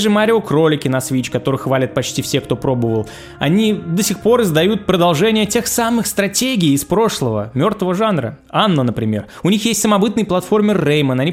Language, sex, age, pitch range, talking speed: Russian, male, 20-39, 135-195 Hz, 175 wpm